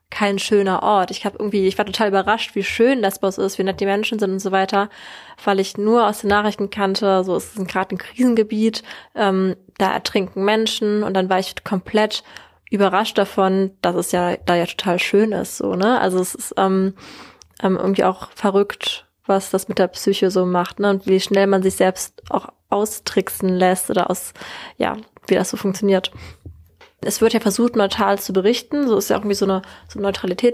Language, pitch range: German, 190-210 Hz